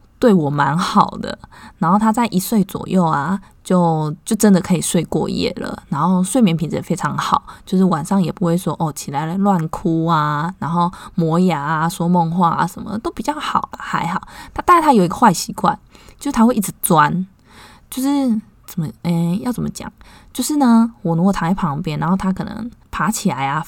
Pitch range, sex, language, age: 170-220 Hz, female, Chinese, 20-39